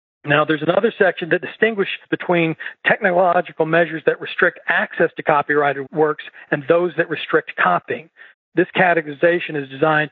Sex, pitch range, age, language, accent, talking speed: male, 150-175 Hz, 40-59, English, American, 140 wpm